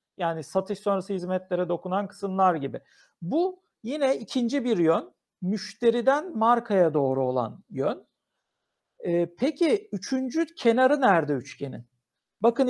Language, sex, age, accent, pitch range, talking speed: Turkish, male, 60-79, native, 185-245 Hz, 115 wpm